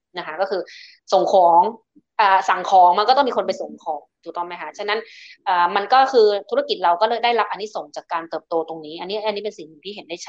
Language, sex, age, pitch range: Thai, female, 20-39, 180-230 Hz